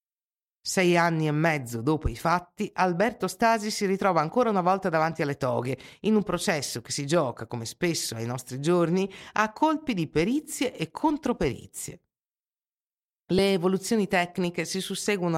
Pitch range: 135-205 Hz